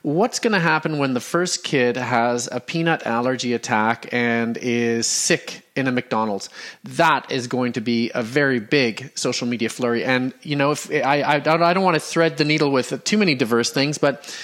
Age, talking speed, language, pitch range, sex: 30-49, 200 wpm, English, 125-160 Hz, male